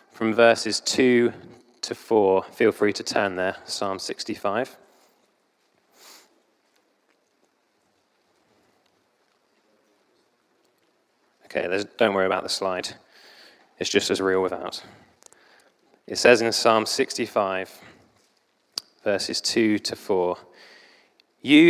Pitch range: 110-135 Hz